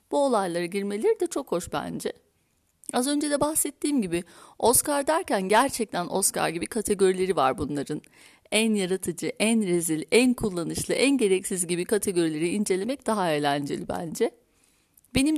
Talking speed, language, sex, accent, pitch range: 135 wpm, Turkish, female, native, 185-260 Hz